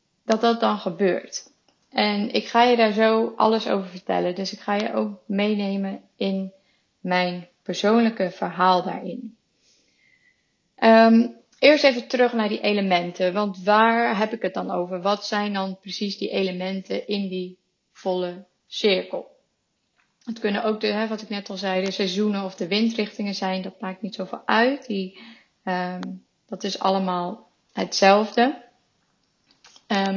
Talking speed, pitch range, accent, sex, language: 150 wpm, 185-220 Hz, Dutch, female, Dutch